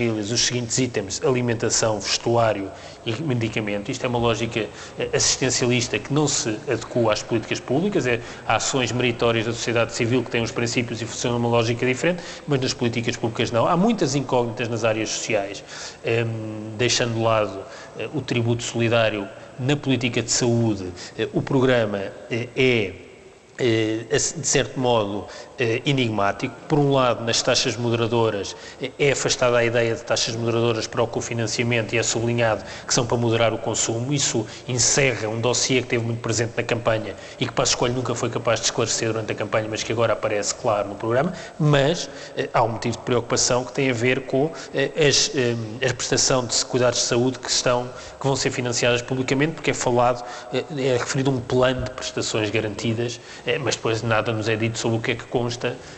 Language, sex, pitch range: Portuguese, male, 115-130 Hz